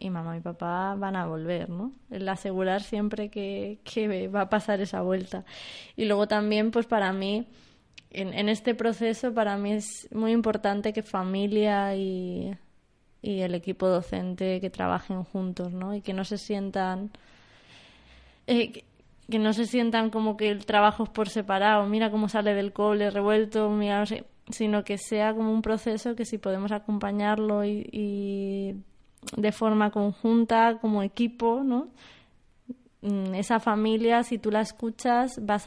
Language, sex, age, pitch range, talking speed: Spanish, female, 20-39, 195-220 Hz, 160 wpm